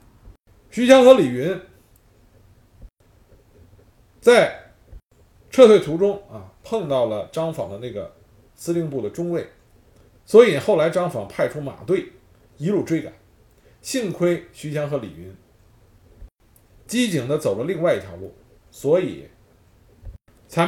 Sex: male